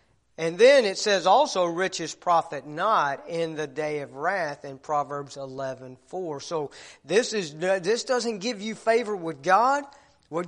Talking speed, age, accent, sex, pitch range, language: 155 wpm, 40-59, American, male, 135-200 Hz, English